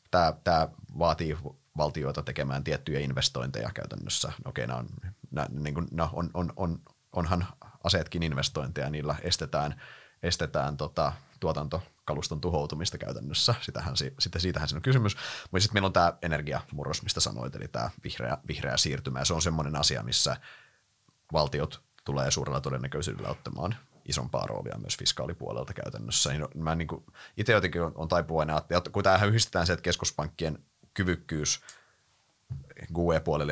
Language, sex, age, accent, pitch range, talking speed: Finnish, male, 30-49, native, 75-95 Hz, 140 wpm